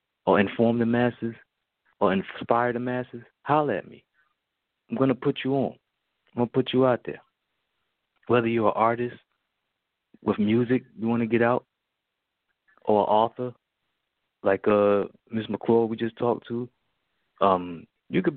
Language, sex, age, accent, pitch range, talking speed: English, male, 30-49, American, 105-125 Hz, 160 wpm